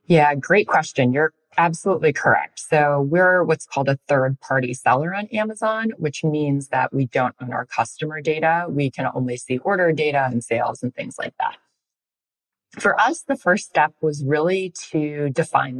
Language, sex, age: English, female, 20-39